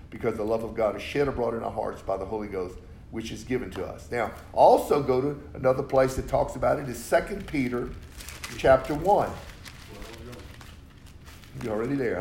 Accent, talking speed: American, 180 wpm